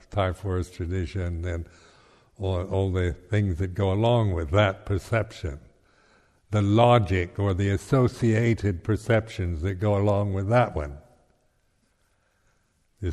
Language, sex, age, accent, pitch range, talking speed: English, male, 60-79, American, 95-120 Hz, 125 wpm